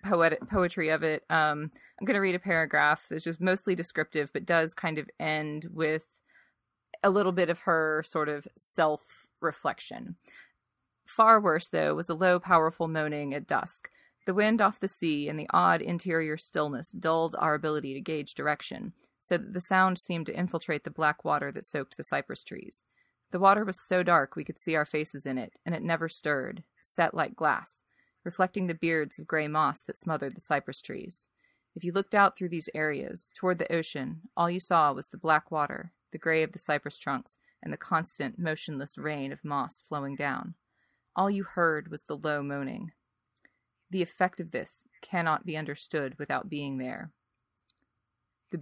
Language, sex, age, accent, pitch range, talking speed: English, female, 30-49, American, 150-180 Hz, 185 wpm